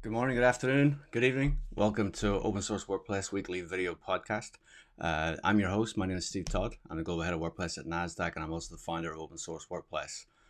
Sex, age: male, 30-49